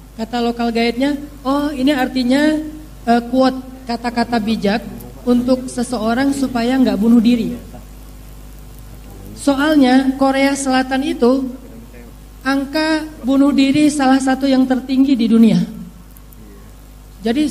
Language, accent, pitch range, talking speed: Indonesian, native, 240-290 Hz, 100 wpm